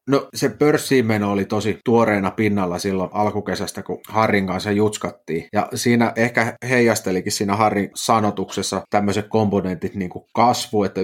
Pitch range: 95-115 Hz